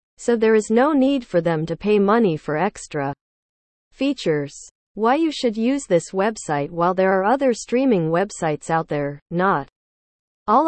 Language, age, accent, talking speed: English, 40-59, American, 165 wpm